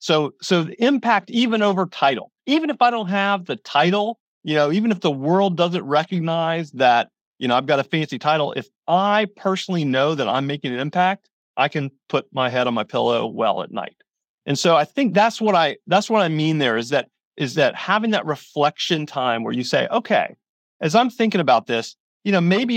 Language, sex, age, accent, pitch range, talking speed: English, male, 40-59, American, 145-200 Hz, 215 wpm